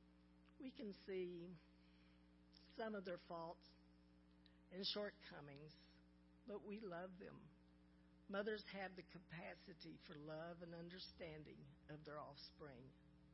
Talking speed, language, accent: 110 wpm, English, American